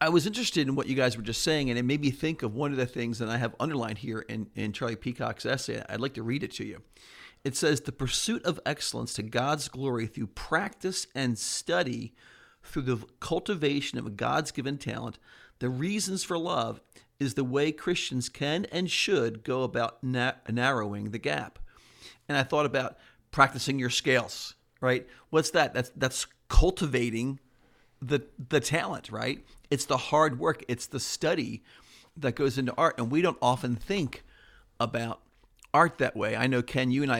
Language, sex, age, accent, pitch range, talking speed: English, male, 40-59, American, 115-145 Hz, 190 wpm